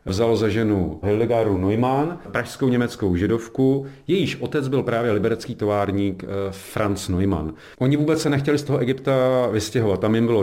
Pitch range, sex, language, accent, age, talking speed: 105-130 Hz, male, Czech, native, 40-59, 155 wpm